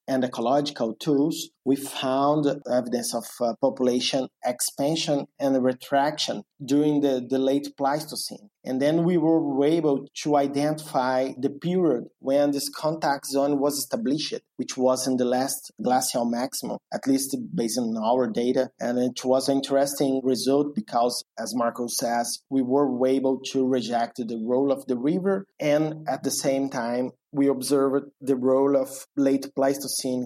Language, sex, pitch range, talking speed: English, male, 130-145 Hz, 155 wpm